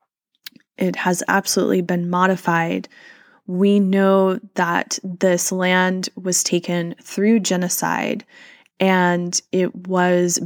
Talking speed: 100 wpm